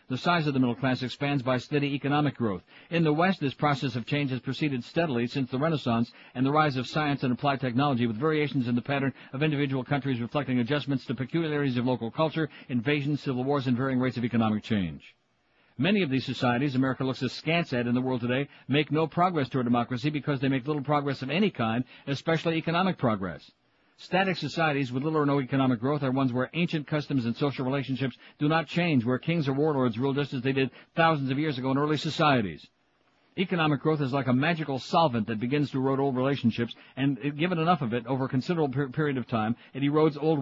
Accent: American